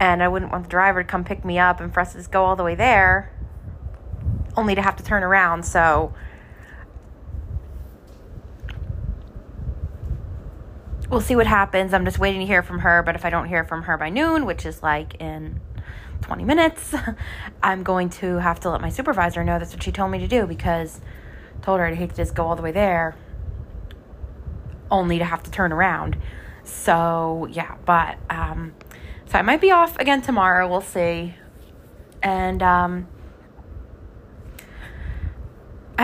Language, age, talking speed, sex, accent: English, 20-39, 175 wpm, female, American